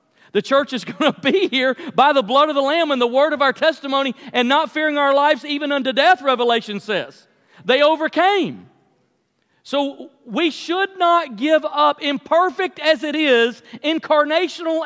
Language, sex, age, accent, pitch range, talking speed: English, male, 40-59, American, 240-305 Hz, 170 wpm